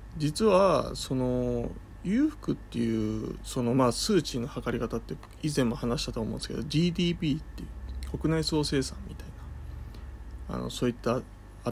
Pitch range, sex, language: 105-135 Hz, male, Japanese